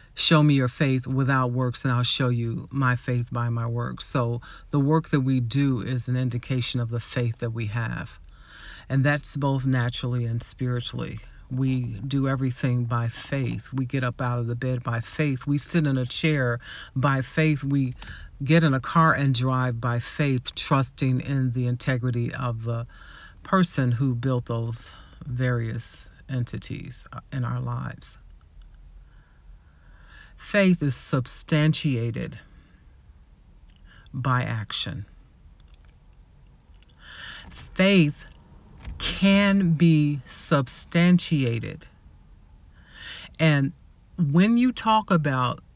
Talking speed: 125 wpm